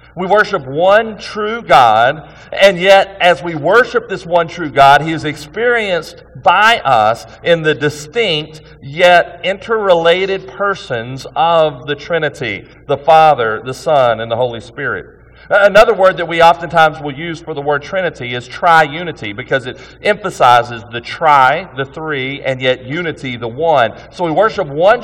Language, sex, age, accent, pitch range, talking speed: English, male, 40-59, American, 140-185 Hz, 160 wpm